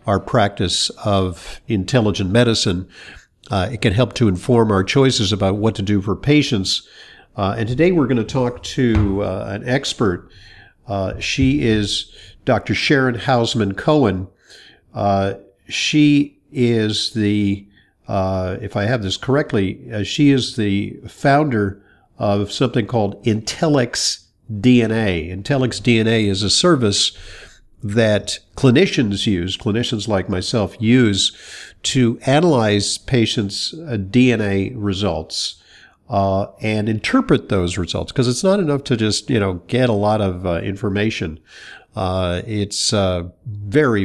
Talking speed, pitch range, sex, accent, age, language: 130 wpm, 100-125 Hz, male, American, 50-69, English